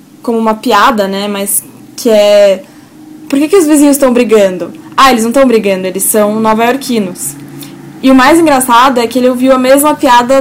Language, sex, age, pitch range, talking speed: Portuguese, female, 10-29, 215-270 Hz, 190 wpm